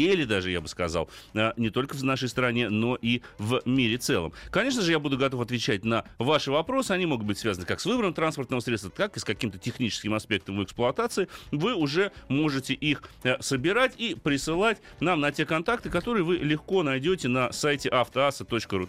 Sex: male